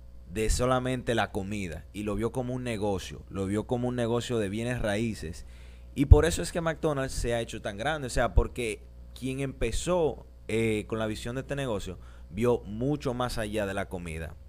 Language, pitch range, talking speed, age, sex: Spanish, 95-140 Hz, 200 wpm, 30-49, male